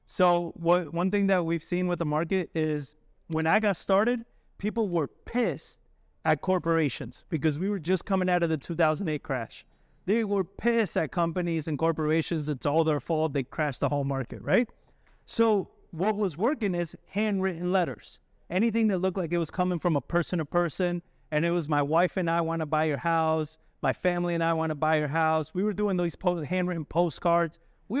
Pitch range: 155-185 Hz